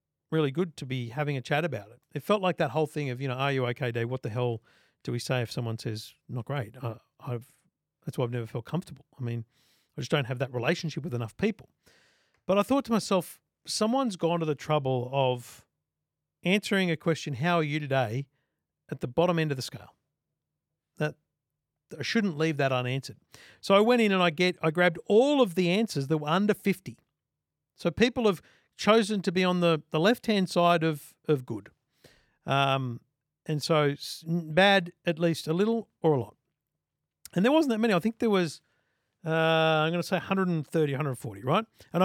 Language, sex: English, male